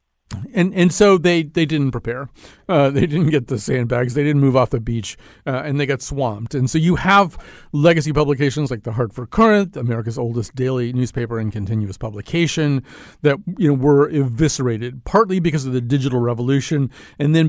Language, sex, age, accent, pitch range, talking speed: English, male, 40-59, American, 125-160 Hz, 185 wpm